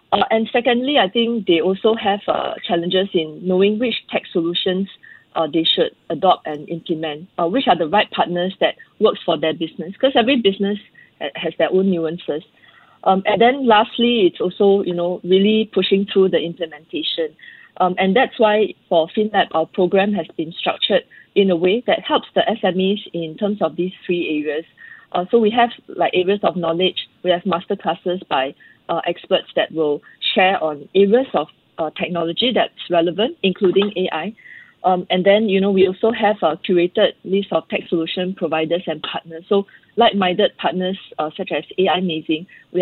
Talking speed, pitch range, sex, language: 180 wpm, 170-210 Hz, female, English